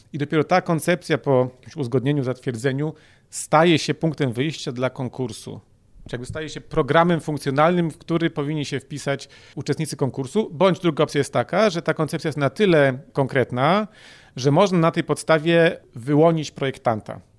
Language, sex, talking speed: Polish, male, 155 wpm